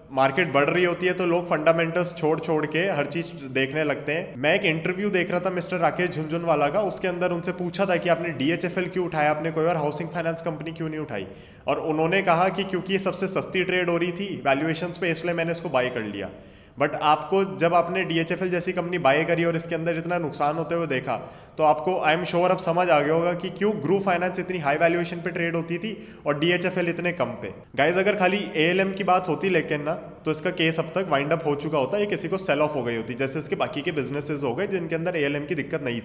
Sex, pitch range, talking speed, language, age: male, 155-180 Hz, 245 wpm, Hindi, 20-39